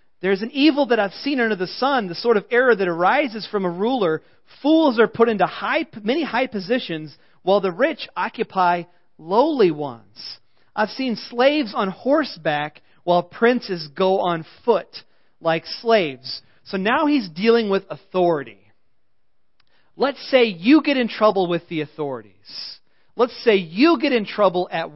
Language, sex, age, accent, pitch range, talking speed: English, male, 40-59, American, 170-260 Hz, 155 wpm